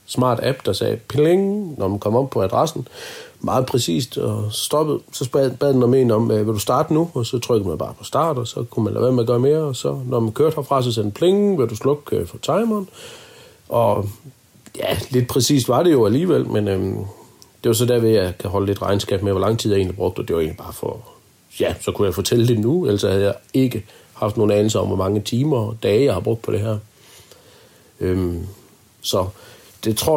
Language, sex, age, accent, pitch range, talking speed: Danish, male, 40-59, native, 105-125 Hz, 235 wpm